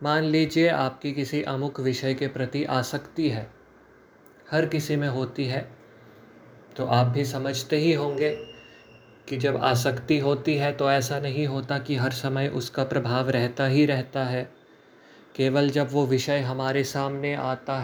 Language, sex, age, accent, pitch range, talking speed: Hindi, male, 30-49, native, 130-145 Hz, 155 wpm